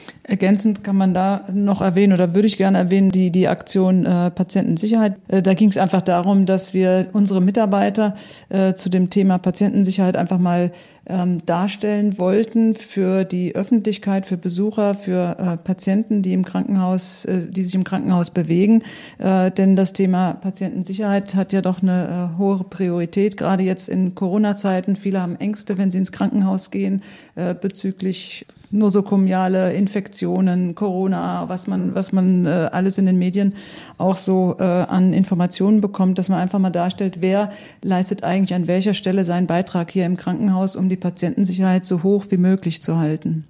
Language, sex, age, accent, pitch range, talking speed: German, female, 40-59, German, 180-195 Hz, 165 wpm